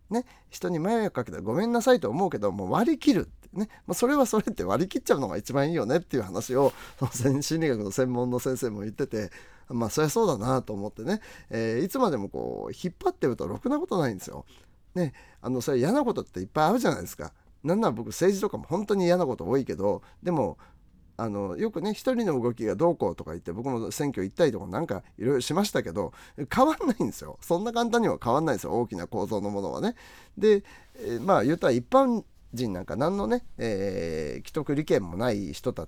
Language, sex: Japanese, male